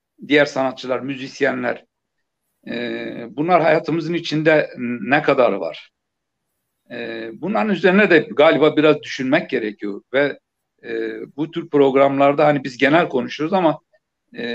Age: 60-79